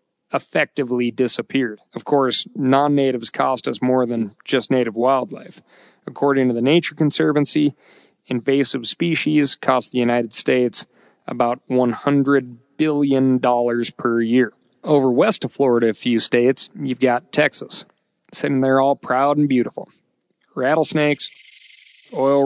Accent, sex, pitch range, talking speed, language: American, male, 125-150 Hz, 125 wpm, English